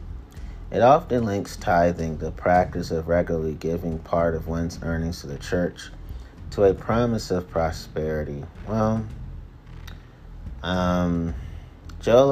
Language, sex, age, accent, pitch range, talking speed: English, male, 30-49, American, 80-100 Hz, 115 wpm